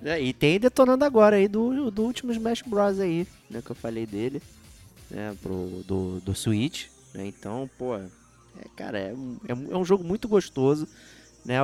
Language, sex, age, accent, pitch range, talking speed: Portuguese, male, 20-39, Brazilian, 125-205 Hz, 185 wpm